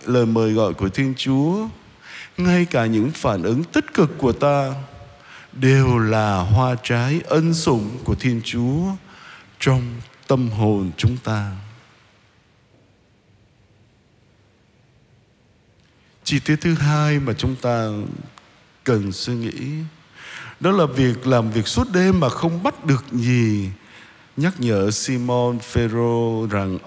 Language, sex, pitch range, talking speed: Vietnamese, male, 110-155 Hz, 125 wpm